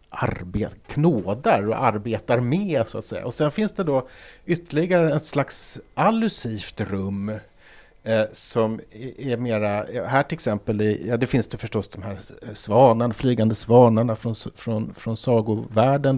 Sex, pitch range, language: male, 110-135 Hz, Swedish